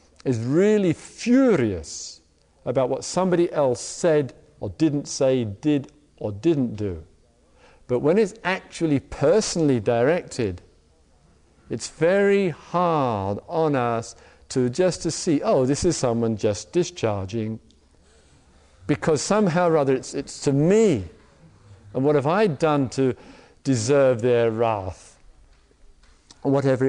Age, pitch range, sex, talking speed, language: 50-69, 90-150 Hz, male, 120 wpm, English